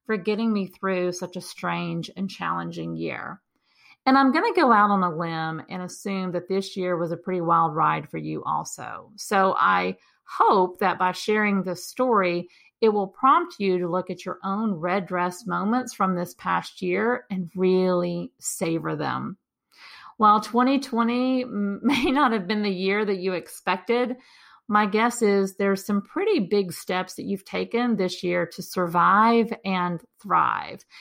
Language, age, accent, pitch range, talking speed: English, 40-59, American, 180-225 Hz, 170 wpm